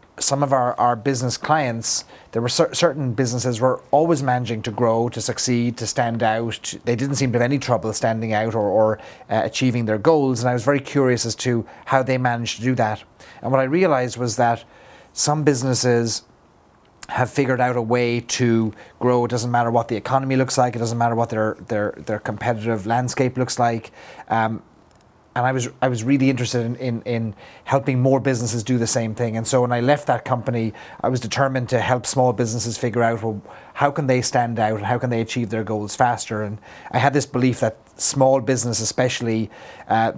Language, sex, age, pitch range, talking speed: English, male, 30-49, 115-130 Hz, 205 wpm